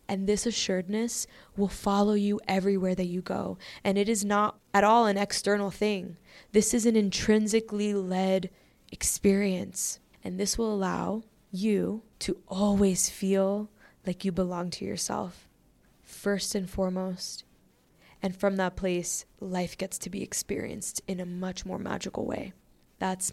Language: English